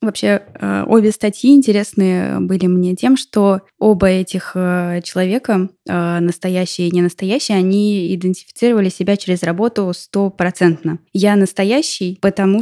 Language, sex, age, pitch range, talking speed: Russian, female, 20-39, 180-210 Hz, 110 wpm